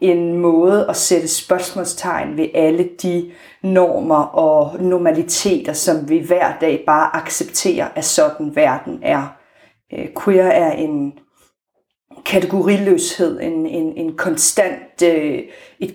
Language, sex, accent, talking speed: Danish, female, native, 100 wpm